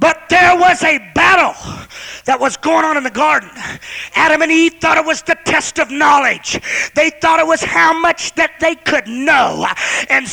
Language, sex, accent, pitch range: English, male, American, 295-360 Hz